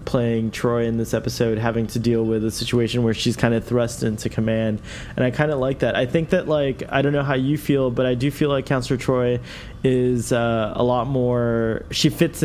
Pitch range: 110-135 Hz